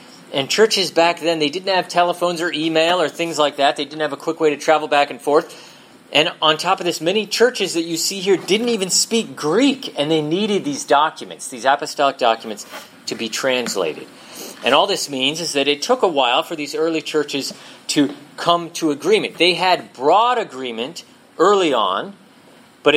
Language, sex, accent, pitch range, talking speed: English, male, American, 145-200 Hz, 200 wpm